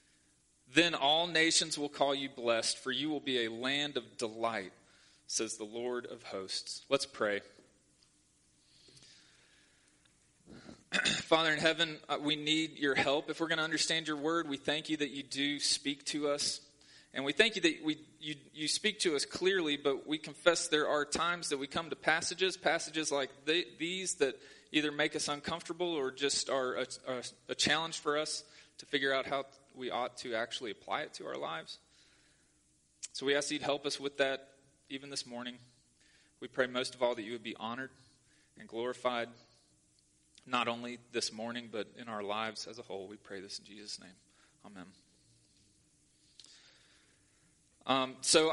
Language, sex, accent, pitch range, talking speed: English, male, American, 120-155 Hz, 175 wpm